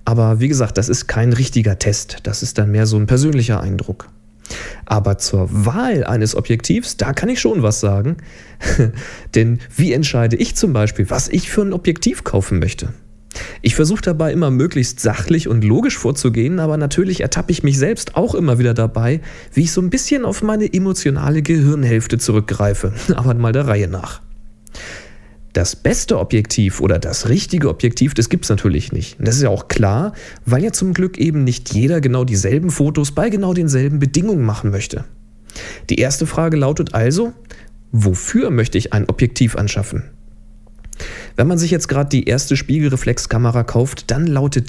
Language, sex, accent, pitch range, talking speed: German, male, German, 110-150 Hz, 175 wpm